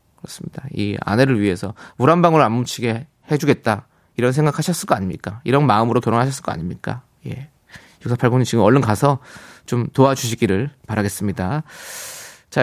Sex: male